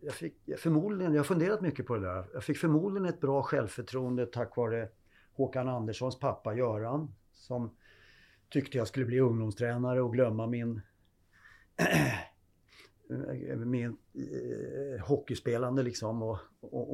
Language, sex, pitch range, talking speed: Swedish, male, 105-140 Hz, 130 wpm